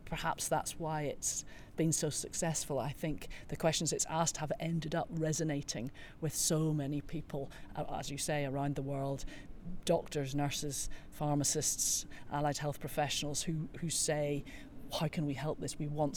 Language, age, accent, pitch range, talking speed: English, 40-59, British, 145-165 Hz, 160 wpm